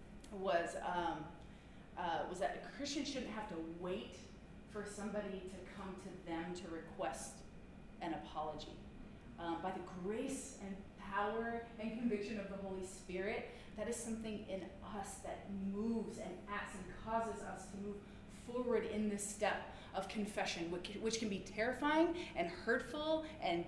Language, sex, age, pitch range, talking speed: English, female, 30-49, 190-245 Hz, 155 wpm